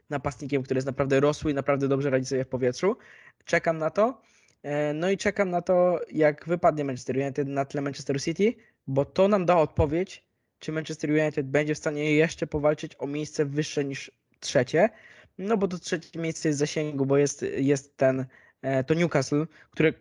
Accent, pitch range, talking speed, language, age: native, 135-160 Hz, 180 wpm, Polish, 20-39